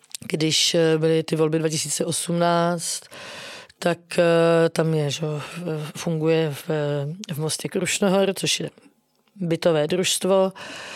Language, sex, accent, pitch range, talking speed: English, female, Czech, 165-195 Hz, 95 wpm